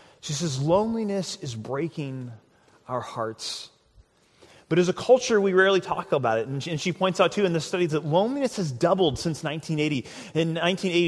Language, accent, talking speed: English, American, 175 wpm